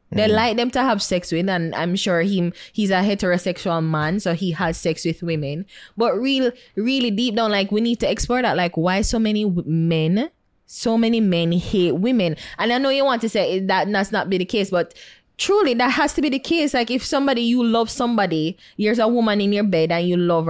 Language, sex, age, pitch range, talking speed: English, female, 20-39, 170-225 Hz, 230 wpm